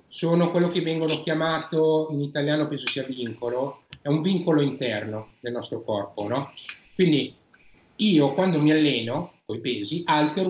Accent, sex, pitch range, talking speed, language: native, male, 135-170 Hz, 155 wpm, Italian